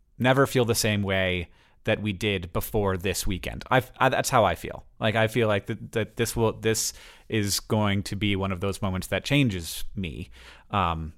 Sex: male